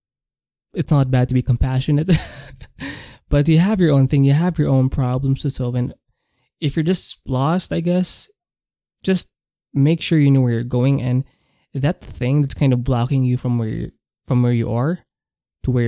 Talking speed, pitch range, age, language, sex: 185 wpm, 125-150 Hz, 20-39, English, male